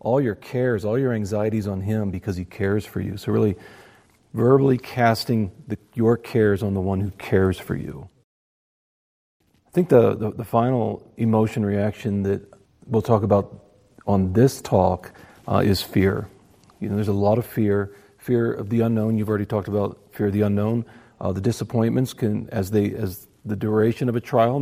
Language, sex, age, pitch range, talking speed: English, male, 40-59, 100-120 Hz, 185 wpm